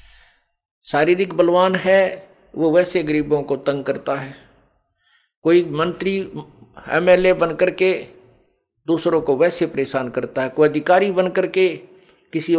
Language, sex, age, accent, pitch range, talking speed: Hindi, male, 50-69, native, 140-180 Hz, 135 wpm